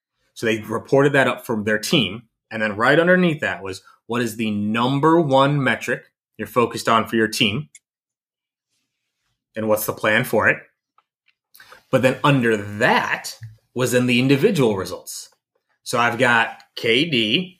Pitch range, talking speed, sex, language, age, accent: 110-135 Hz, 155 wpm, male, English, 30-49, American